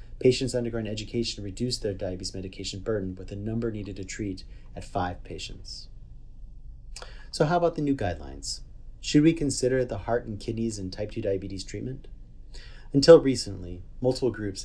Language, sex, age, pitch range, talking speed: English, male, 30-49, 100-120 Hz, 160 wpm